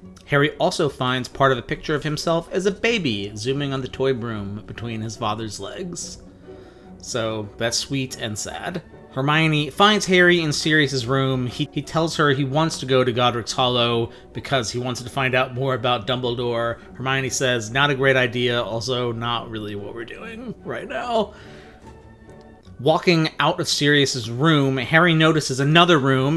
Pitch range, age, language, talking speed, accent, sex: 120-150 Hz, 30-49, English, 170 wpm, American, male